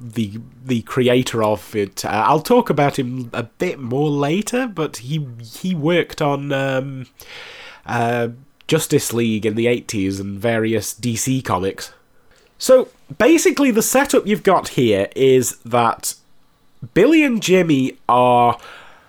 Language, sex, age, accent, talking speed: English, male, 30-49, British, 135 wpm